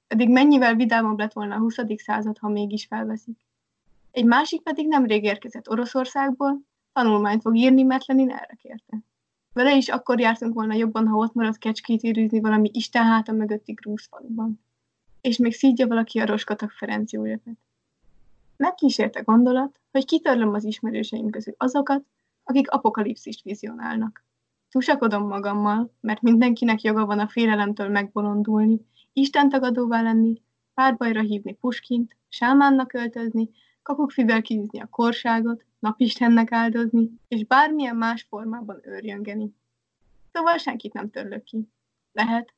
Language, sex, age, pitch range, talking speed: Hungarian, female, 20-39, 215-255 Hz, 130 wpm